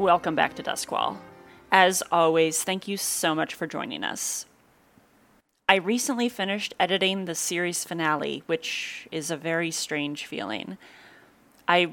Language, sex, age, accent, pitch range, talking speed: English, female, 30-49, American, 170-230 Hz, 135 wpm